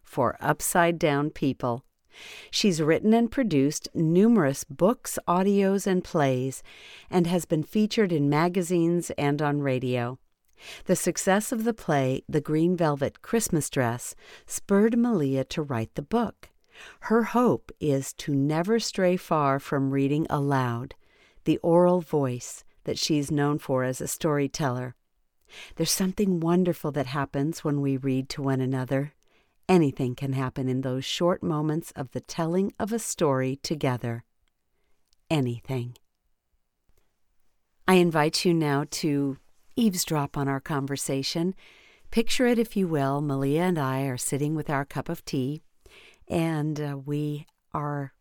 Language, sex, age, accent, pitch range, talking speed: English, female, 50-69, American, 135-180 Hz, 140 wpm